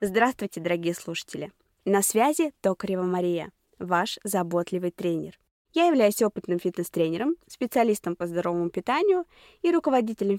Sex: female